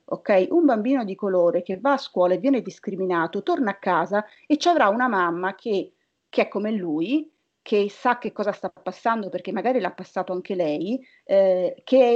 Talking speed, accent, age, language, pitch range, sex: 190 wpm, native, 30-49, Italian, 185-260 Hz, female